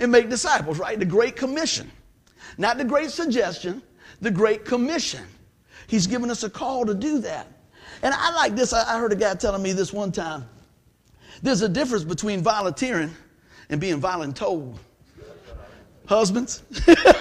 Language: English